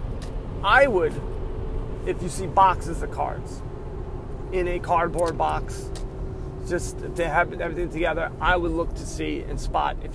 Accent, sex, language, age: American, male, English, 30-49